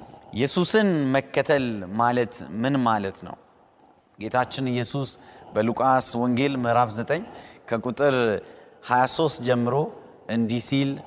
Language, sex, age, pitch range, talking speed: Amharic, male, 30-49, 120-175 Hz, 85 wpm